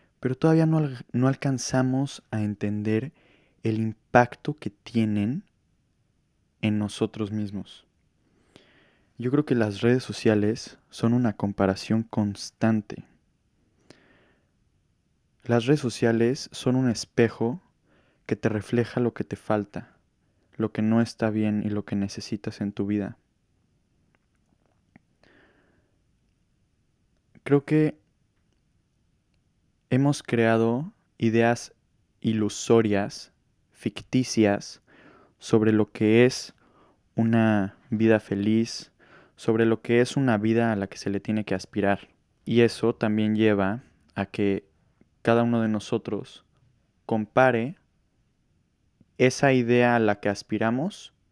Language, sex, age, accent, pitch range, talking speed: Spanish, male, 20-39, Mexican, 105-120 Hz, 110 wpm